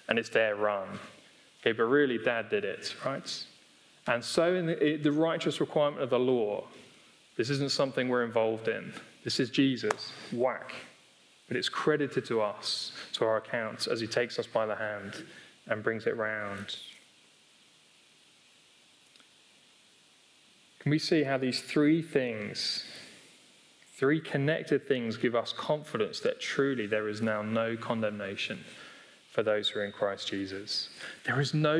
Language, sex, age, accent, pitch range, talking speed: English, male, 20-39, British, 125-170 Hz, 150 wpm